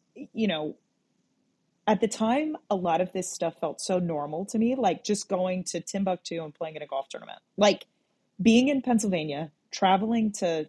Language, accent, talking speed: English, American, 180 wpm